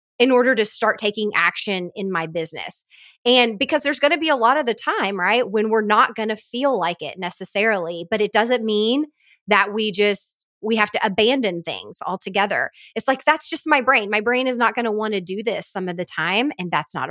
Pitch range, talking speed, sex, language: 195-245 Hz, 230 wpm, female, English